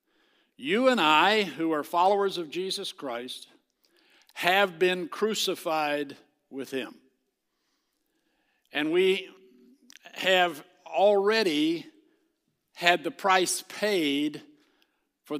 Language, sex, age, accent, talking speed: English, male, 60-79, American, 90 wpm